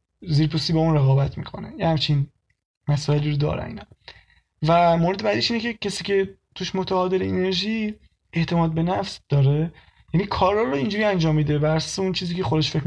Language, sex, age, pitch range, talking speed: Persian, male, 20-39, 150-185 Hz, 170 wpm